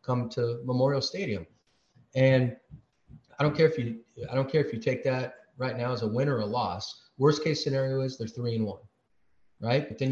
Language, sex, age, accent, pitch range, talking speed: English, male, 30-49, American, 115-135 Hz, 215 wpm